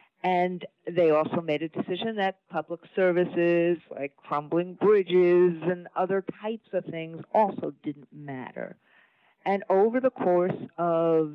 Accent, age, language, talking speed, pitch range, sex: American, 50-69, English, 130 wpm, 155-190 Hz, female